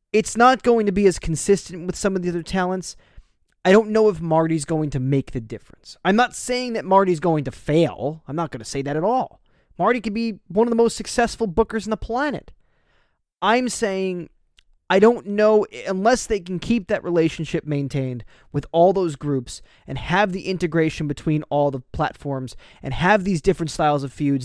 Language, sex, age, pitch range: English, male, 20-39, 135-180 Hz